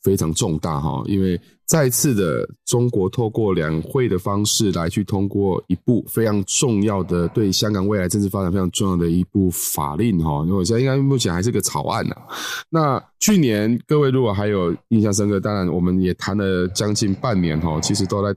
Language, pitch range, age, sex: Chinese, 90-105 Hz, 20-39, male